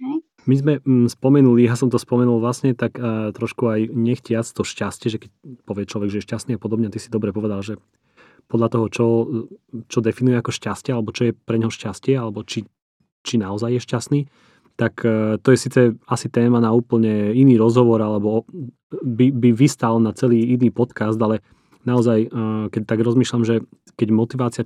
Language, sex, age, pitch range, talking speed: Slovak, male, 30-49, 110-125 Hz, 185 wpm